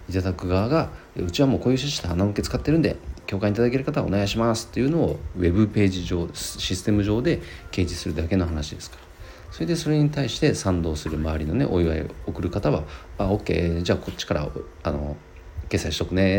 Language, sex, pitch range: Japanese, male, 85-115 Hz